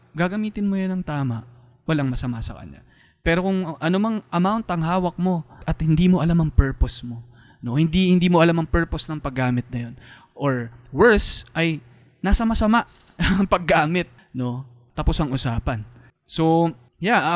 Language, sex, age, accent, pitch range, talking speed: Filipino, male, 20-39, native, 125-160 Hz, 160 wpm